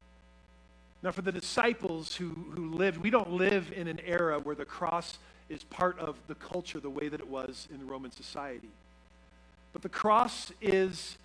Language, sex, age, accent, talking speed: English, male, 50-69, American, 175 wpm